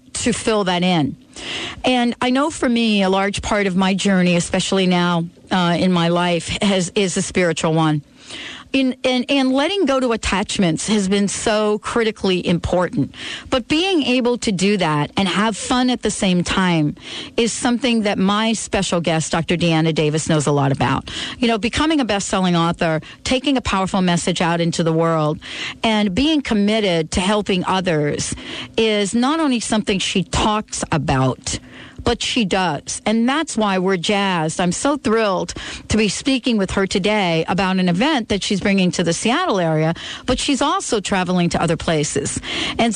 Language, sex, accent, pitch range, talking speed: English, female, American, 175-235 Hz, 175 wpm